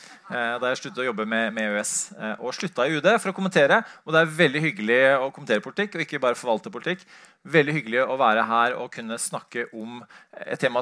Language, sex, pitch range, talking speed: English, male, 125-165 Hz, 215 wpm